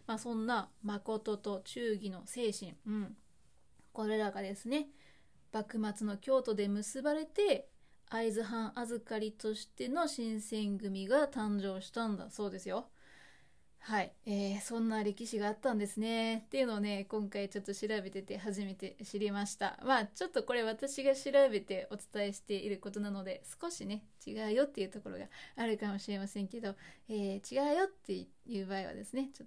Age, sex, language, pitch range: 20-39, female, Japanese, 200-240 Hz